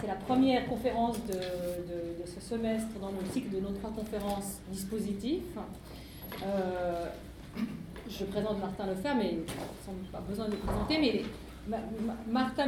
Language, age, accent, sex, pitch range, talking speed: French, 40-59, French, female, 195-245 Hz, 160 wpm